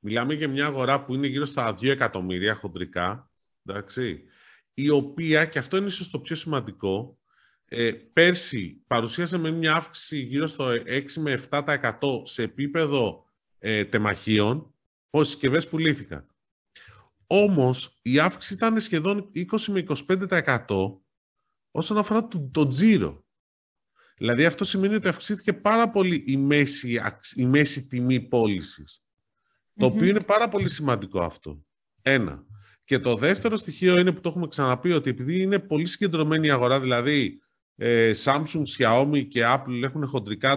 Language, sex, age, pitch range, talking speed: Greek, male, 30-49, 115-170 Hz, 135 wpm